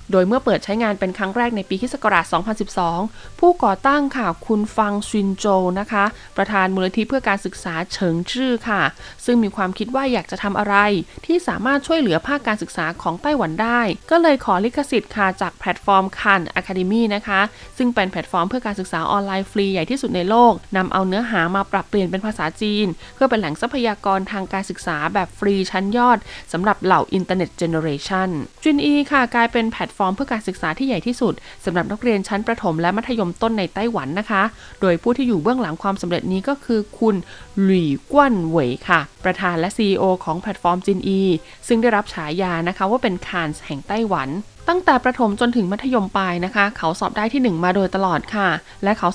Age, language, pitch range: 20-39, Thai, 185-230 Hz